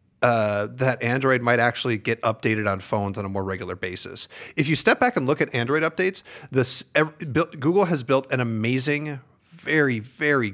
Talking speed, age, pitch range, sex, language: 175 wpm, 40-59, 105-130 Hz, male, English